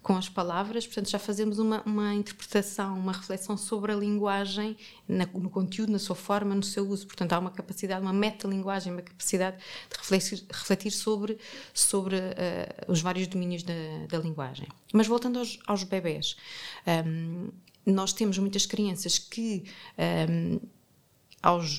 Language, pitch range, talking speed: English, 175-200 Hz, 145 wpm